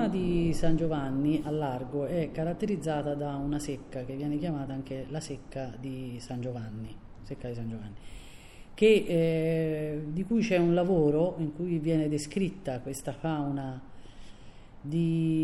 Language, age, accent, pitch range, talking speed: Italian, 30-49, native, 130-165 Hz, 145 wpm